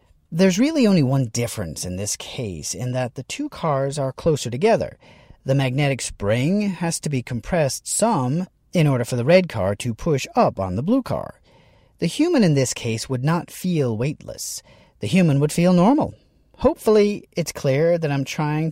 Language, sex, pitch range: English, male, 120-175 Hz